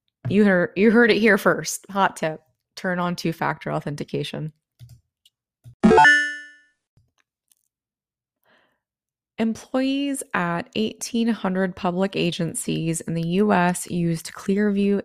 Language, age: English, 20-39